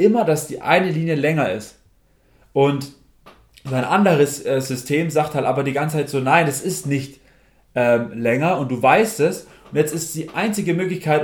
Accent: German